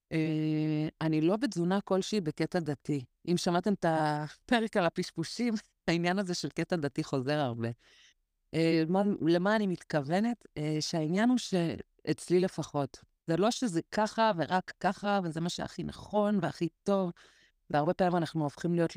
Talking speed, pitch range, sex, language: 150 wpm, 150-200 Hz, female, Hebrew